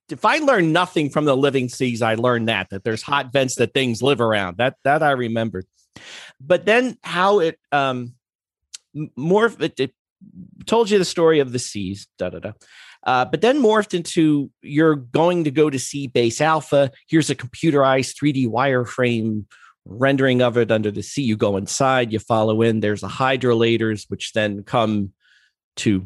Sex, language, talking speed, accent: male, English, 175 wpm, American